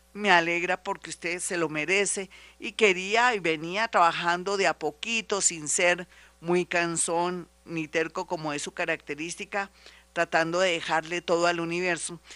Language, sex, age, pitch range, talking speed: Spanish, female, 50-69, 160-195 Hz, 150 wpm